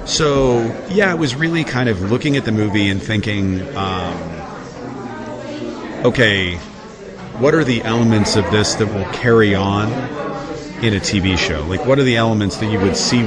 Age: 40-59